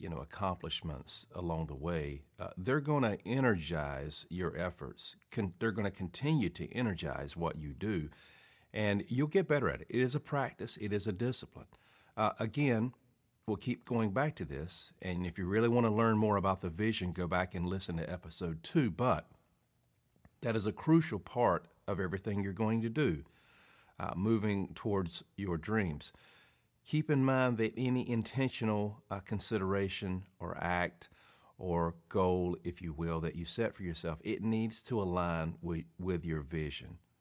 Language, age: English, 50-69